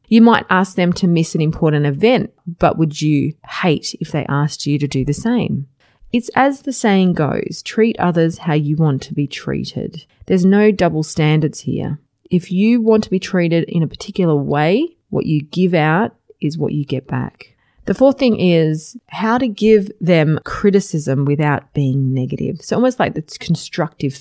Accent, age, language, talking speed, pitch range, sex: Australian, 30-49, English, 185 wpm, 145-195 Hz, female